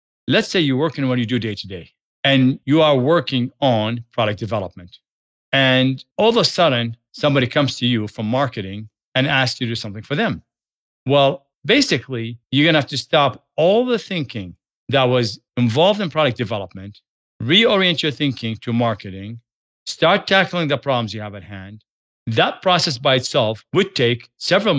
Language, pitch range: English, 115-145 Hz